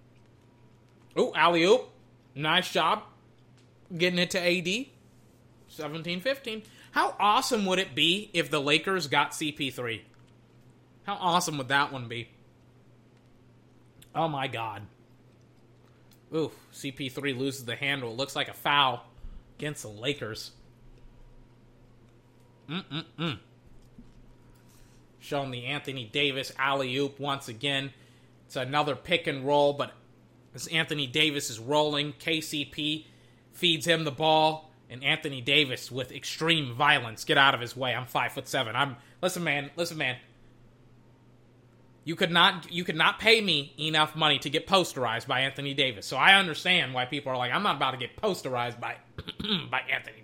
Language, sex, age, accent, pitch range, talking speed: English, male, 30-49, American, 125-160 Hz, 140 wpm